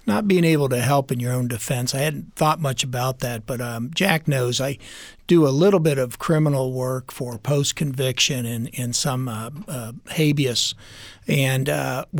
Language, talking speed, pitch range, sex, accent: English, 180 wpm, 130-155 Hz, male, American